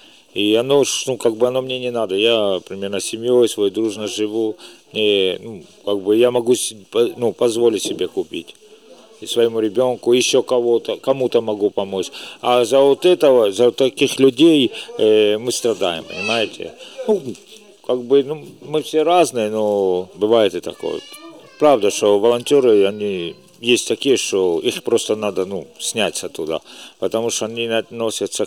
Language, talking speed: Ukrainian, 155 wpm